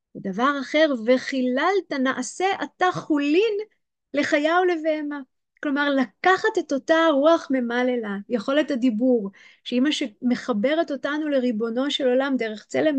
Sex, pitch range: female, 215-295 Hz